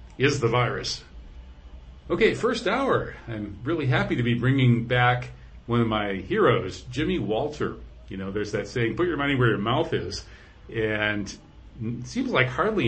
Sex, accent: male, American